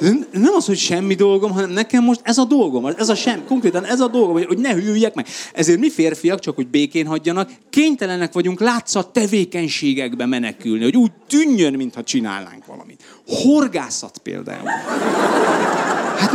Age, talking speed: 30-49, 160 wpm